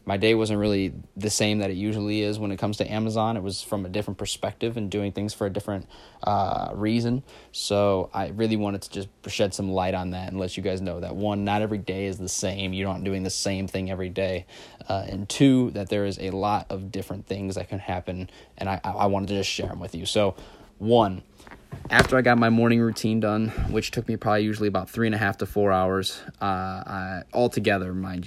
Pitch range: 95-110 Hz